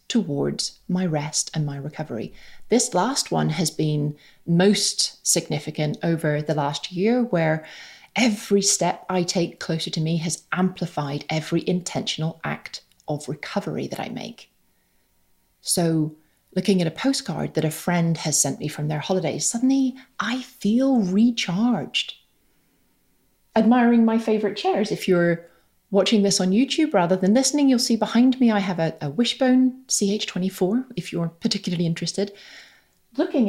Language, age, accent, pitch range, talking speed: English, 30-49, British, 170-235 Hz, 145 wpm